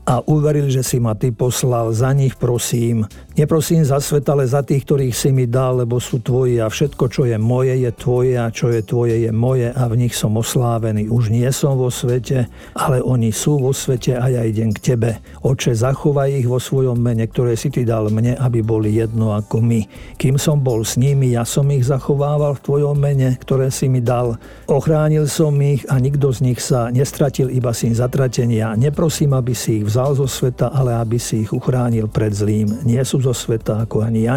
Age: 50-69